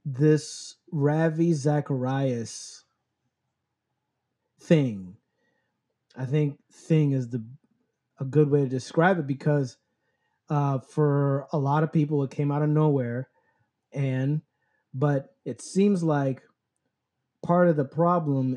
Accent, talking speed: American, 115 wpm